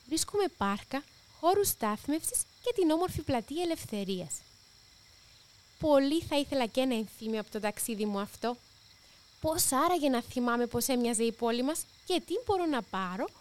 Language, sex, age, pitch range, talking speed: Greek, female, 20-39, 205-325 Hz, 150 wpm